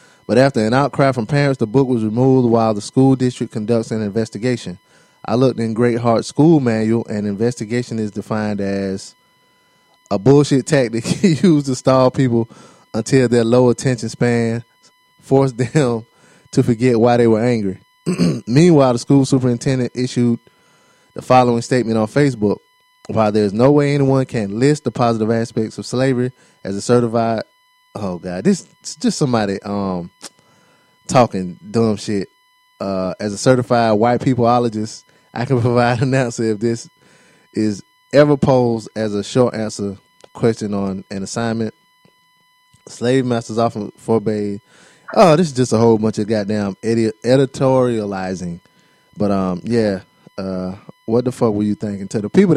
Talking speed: 155 wpm